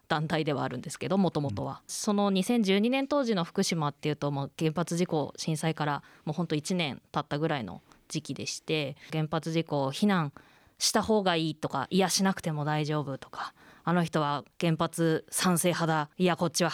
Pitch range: 155-240 Hz